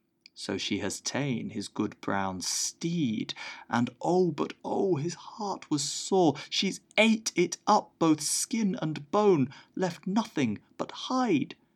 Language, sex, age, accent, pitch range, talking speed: English, male, 30-49, British, 105-155 Hz, 145 wpm